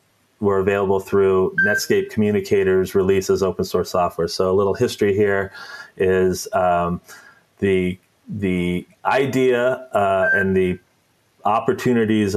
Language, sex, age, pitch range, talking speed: English, male, 30-49, 95-120 Hz, 110 wpm